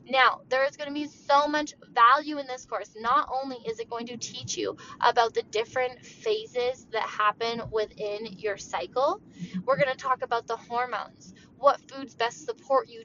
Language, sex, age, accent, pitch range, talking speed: English, female, 10-29, American, 225-285 Hz, 190 wpm